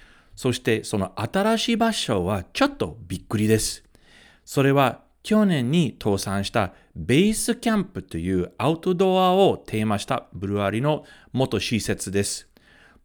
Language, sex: Japanese, male